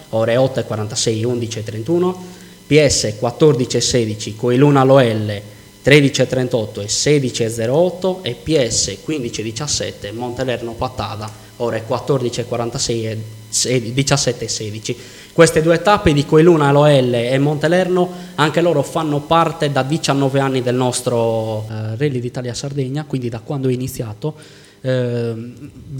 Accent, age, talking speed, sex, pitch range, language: native, 20-39, 105 wpm, male, 120-150 Hz, Italian